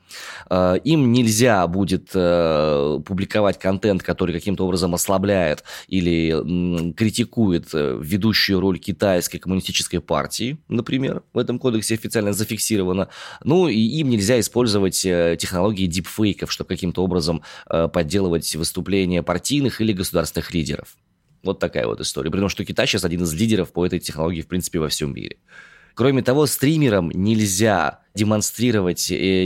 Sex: male